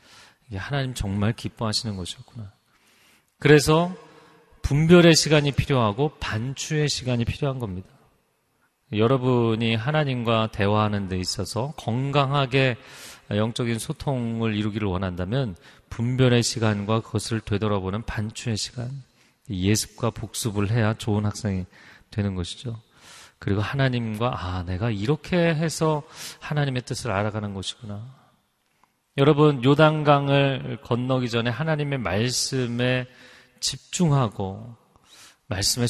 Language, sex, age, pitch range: Korean, male, 40-59, 110-140 Hz